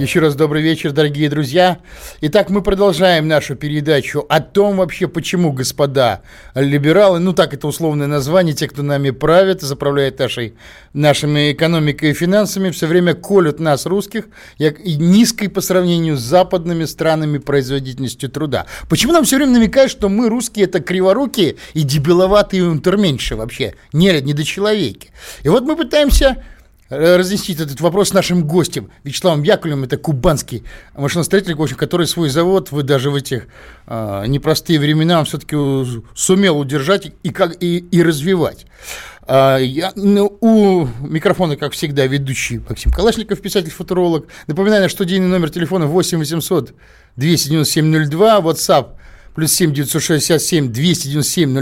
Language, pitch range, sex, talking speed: Russian, 145-185 Hz, male, 145 wpm